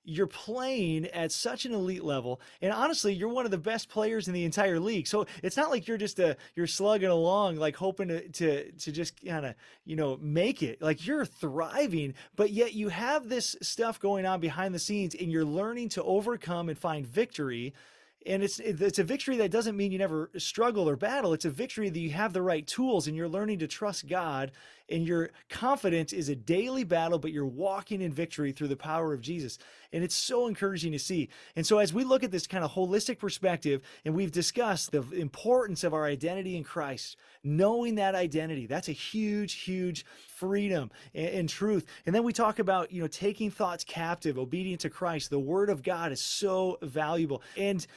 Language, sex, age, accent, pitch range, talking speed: English, male, 20-39, American, 160-205 Hz, 210 wpm